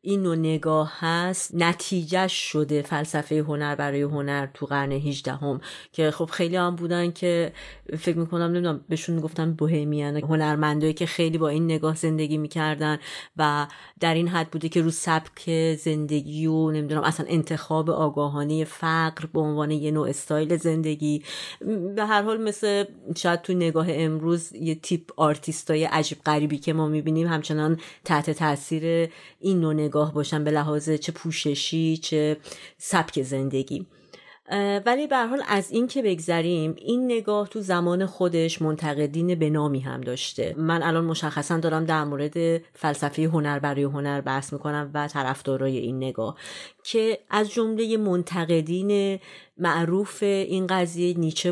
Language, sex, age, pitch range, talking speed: Persian, female, 30-49, 150-175 Hz, 150 wpm